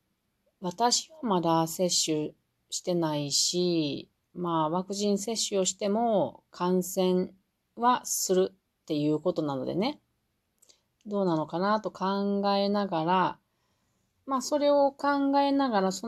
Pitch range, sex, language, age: 160-210 Hz, female, Japanese, 40-59